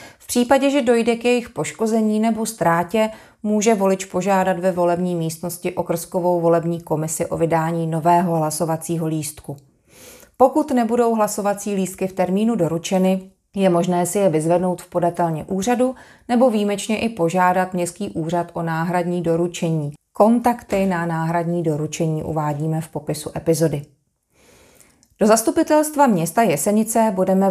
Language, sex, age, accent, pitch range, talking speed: Czech, female, 30-49, native, 165-205 Hz, 130 wpm